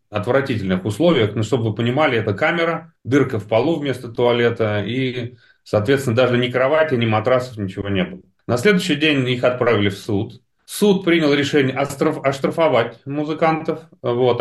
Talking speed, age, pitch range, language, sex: 155 wpm, 30-49, 110-155 Hz, Russian, male